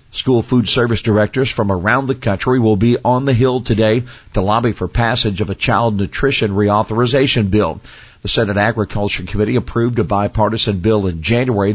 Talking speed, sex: 175 wpm, male